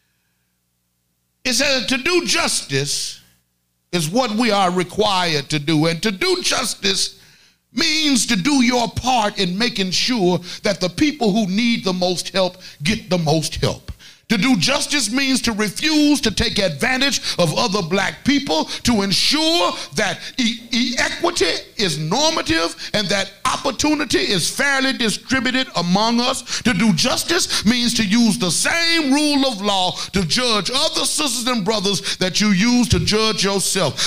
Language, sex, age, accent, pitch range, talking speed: English, male, 50-69, American, 200-285 Hz, 155 wpm